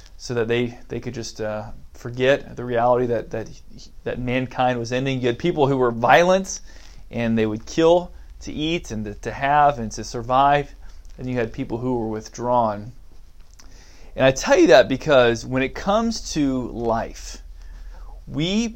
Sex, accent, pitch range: male, American, 115-150 Hz